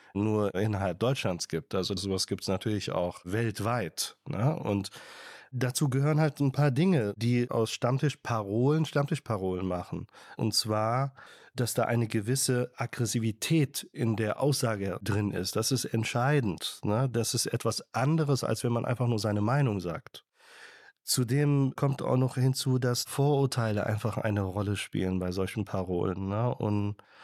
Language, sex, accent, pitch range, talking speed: German, male, German, 105-130 Hz, 145 wpm